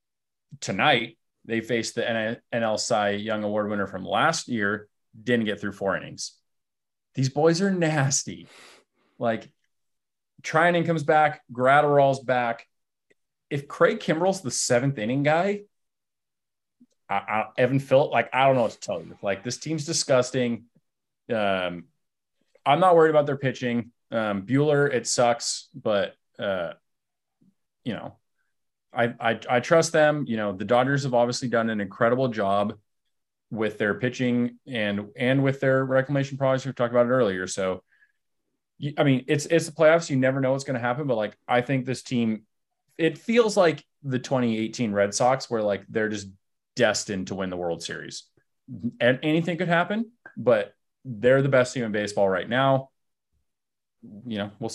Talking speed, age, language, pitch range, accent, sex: 160 wpm, 30-49, English, 110-145 Hz, American, male